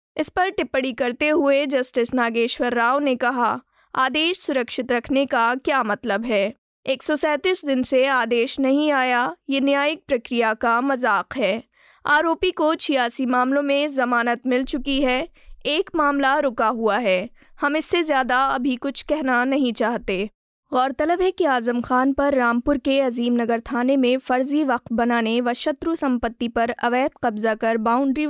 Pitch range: 235-280 Hz